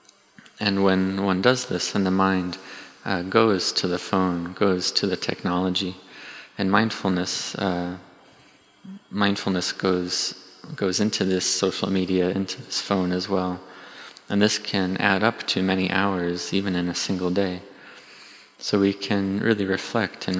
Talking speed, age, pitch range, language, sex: 150 wpm, 20-39, 90-100 Hz, English, male